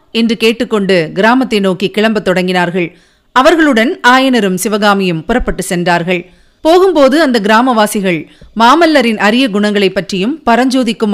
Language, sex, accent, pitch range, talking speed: Tamil, female, native, 195-265 Hz, 90 wpm